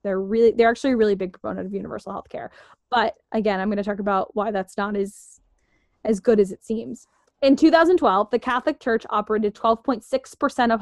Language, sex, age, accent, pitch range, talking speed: English, female, 10-29, American, 215-255 Hz, 200 wpm